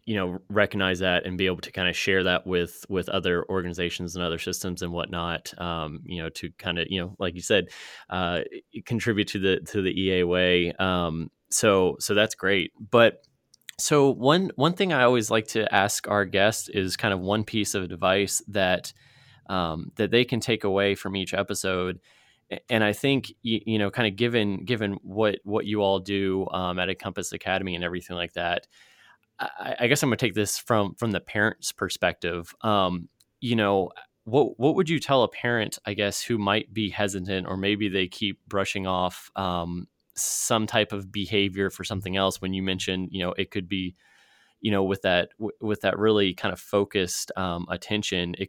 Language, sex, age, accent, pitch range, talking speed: English, male, 20-39, American, 90-105 Hz, 200 wpm